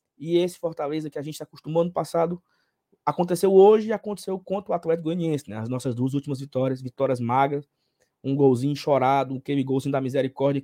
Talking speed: 185 wpm